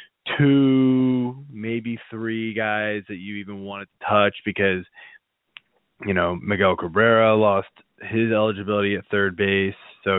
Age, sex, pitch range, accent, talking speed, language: 20-39, male, 100-115 Hz, American, 130 wpm, English